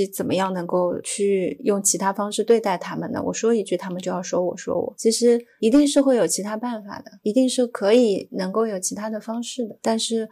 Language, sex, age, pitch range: Chinese, female, 30-49, 195-230 Hz